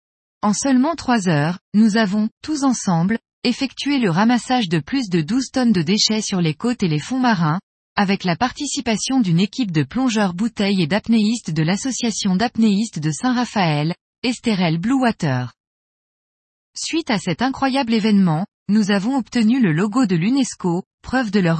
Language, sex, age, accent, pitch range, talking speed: French, female, 20-39, French, 185-245 Hz, 155 wpm